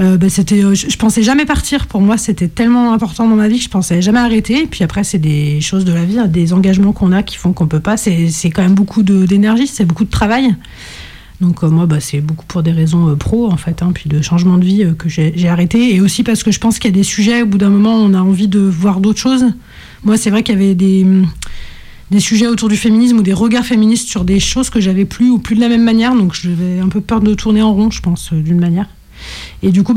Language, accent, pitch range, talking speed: French, French, 185-225 Hz, 290 wpm